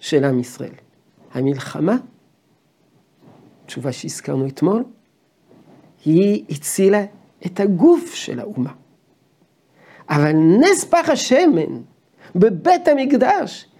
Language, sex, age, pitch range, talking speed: Hebrew, male, 50-69, 165-270 Hz, 80 wpm